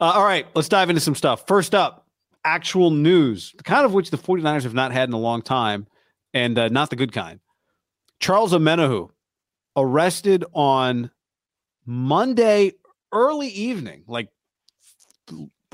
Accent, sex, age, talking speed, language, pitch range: American, male, 40-59, 150 wpm, English, 110-150 Hz